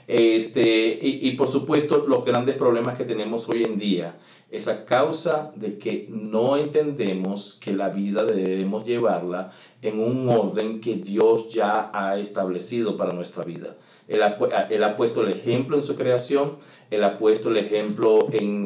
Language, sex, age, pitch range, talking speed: Spanish, male, 40-59, 100-130 Hz, 165 wpm